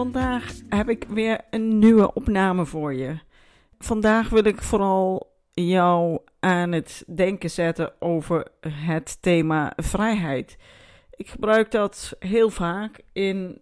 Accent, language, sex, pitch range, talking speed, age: Dutch, Dutch, female, 170-220 Hz, 125 wpm, 40-59